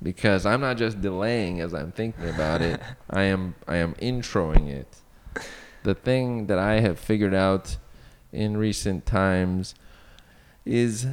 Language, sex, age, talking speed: English, male, 20-39, 145 wpm